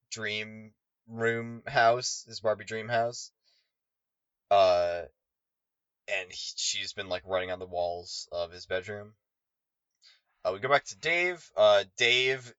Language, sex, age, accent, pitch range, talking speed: English, male, 20-39, American, 90-115 Hz, 135 wpm